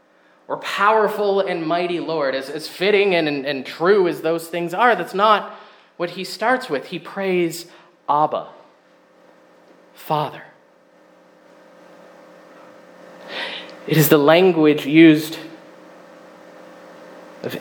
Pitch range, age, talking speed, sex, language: 135-170 Hz, 30-49, 110 wpm, male, English